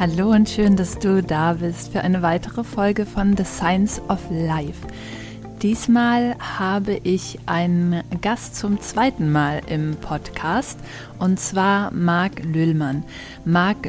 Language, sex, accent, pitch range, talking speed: German, female, German, 175-205 Hz, 135 wpm